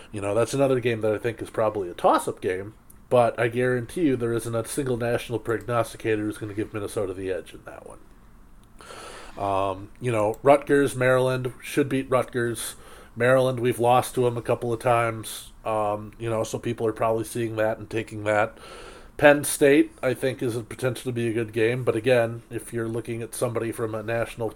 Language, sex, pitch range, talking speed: English, male, 110-125 Hz, 205 wpm